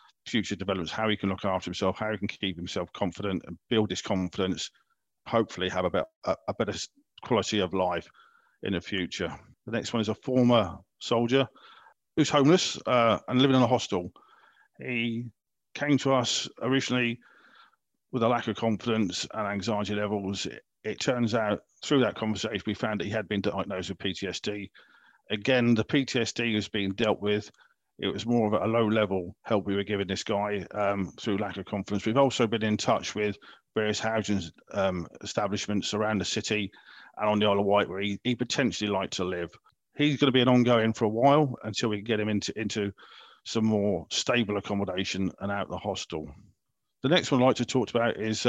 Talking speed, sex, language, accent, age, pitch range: 195 wpm, male, English, British, 40-59, 100-120 Hz